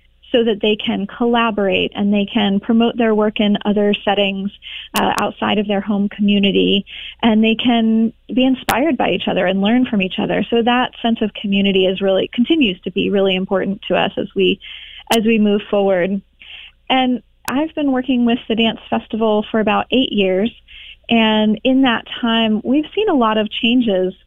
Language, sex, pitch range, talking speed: English, female, 200-235 Hz, 185 wpm